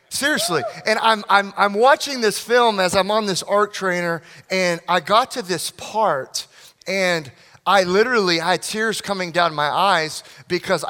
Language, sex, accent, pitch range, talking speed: English, male, American, 160-200 Hz, 165 wpm